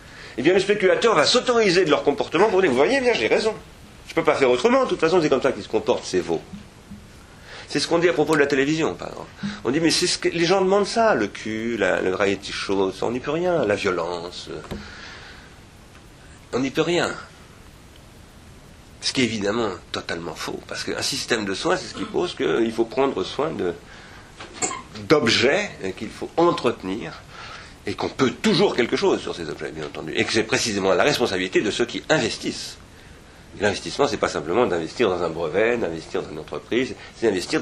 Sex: male